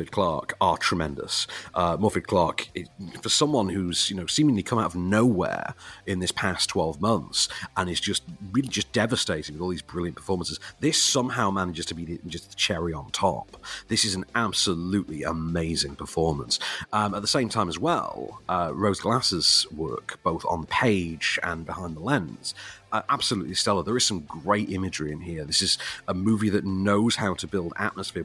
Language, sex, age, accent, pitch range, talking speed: English, male, 40-59, British, 85-115 Hz, 185 wpm